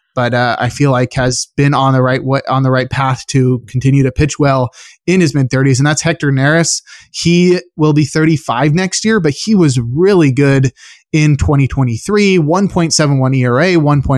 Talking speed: 170 wpm